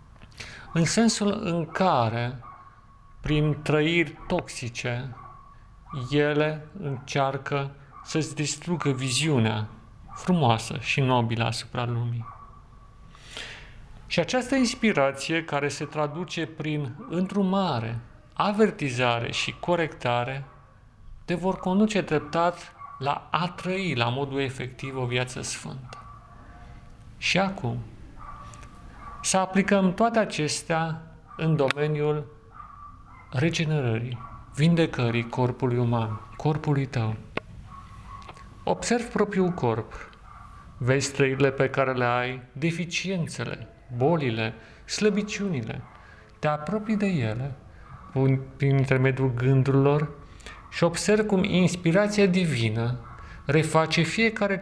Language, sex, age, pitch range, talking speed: Romanian, male, 40-59, 120-170 Hz, 90 wpm